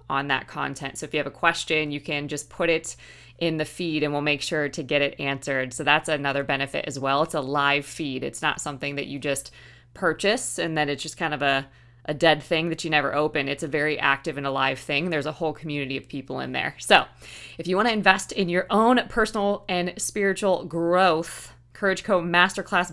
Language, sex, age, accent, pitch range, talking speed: English, female, 20-39, American, 145-190 Hz, 230 wpm